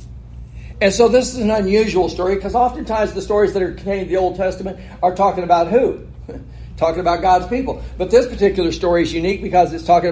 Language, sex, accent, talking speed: English, male, American, 210 wpm